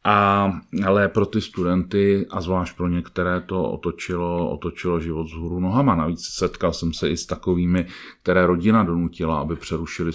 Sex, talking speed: male, 160 wpm